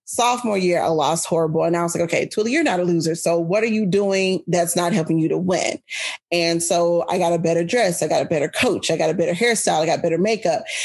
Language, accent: English, American